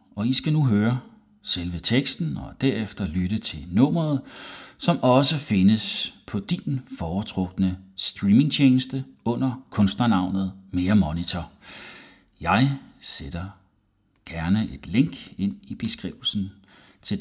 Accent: native